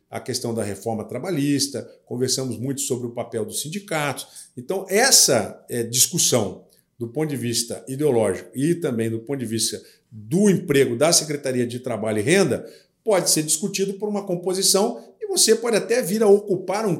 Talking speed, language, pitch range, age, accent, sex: 170 wpm, Portuguese, 125-175 Hz, 50-69, Brazilian, male